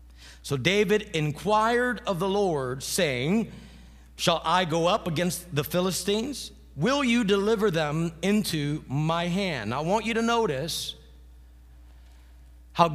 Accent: American